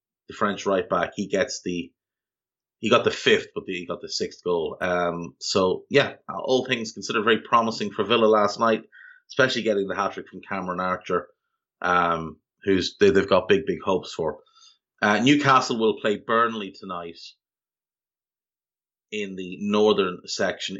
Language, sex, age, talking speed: English, male, 30-49, 160 wpm